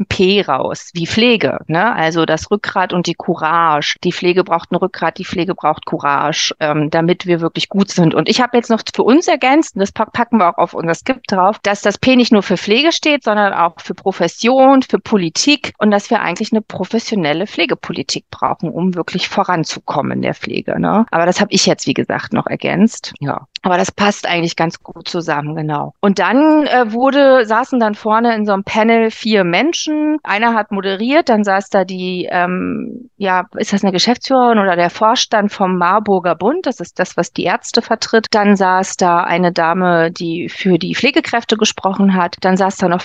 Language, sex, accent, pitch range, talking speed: German, female, German, 170-220 Hz, 200 wpm